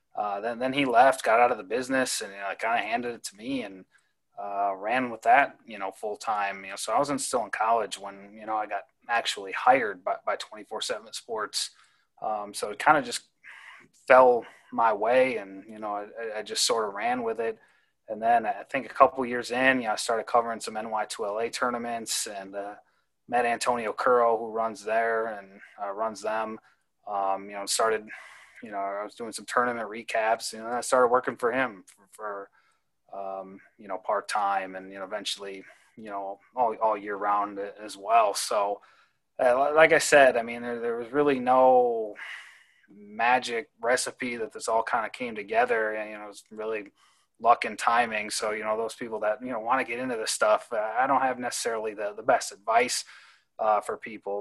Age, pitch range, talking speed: 30-49, 100-125 Hz, 210 wpm